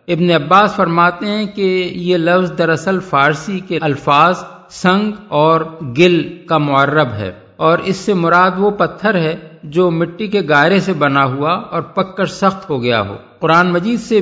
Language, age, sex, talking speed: Urdu, 50-69, male, 175 wpm